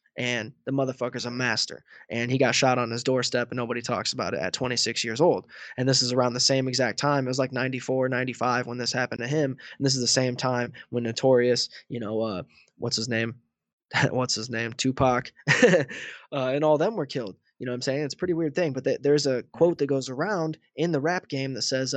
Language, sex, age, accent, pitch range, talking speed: English, male, 20-39, American, 120-140 Hz, 235 wpm